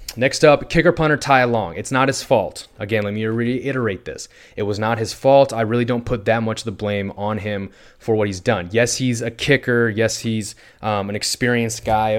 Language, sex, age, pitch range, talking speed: English, male, 20-39, 105-120 Hz, 220 wpm